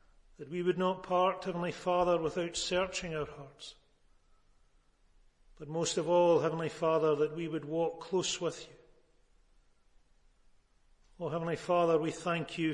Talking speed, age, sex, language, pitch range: 140 wpm, 40-59, male, English, 150-180 Hz